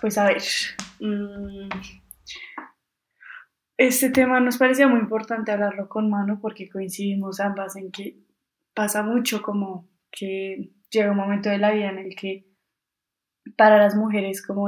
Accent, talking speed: Colombian, 145 wpm